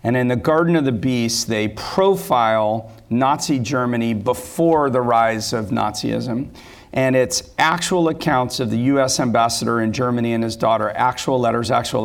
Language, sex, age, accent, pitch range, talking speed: English, male, 40-59, American, 120-150 Hz, 160 wpm